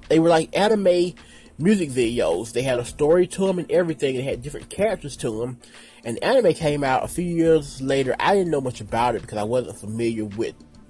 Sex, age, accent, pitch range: male, 20-39, American, 125-180 Hz